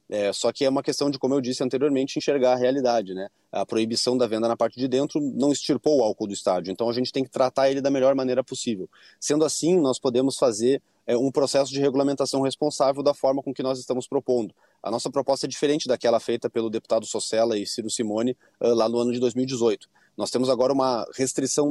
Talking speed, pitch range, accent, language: 225 wpm, 115-140 Hz, Brazilian, Portuguese